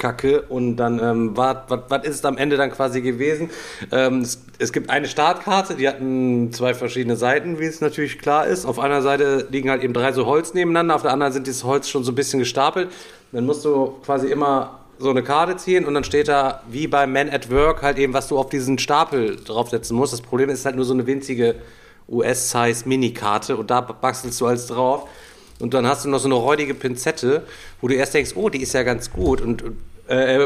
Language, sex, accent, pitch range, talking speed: German, male, German, 120-150 Hz, 220 wpm